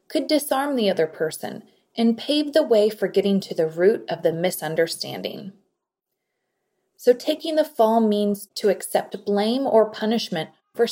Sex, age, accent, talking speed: female, 20-39, American, 155 wpm